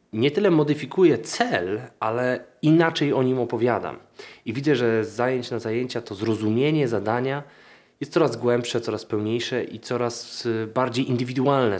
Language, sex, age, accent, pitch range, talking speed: Polish, male, 20-39, native, 110-130 Hz, 140 wpm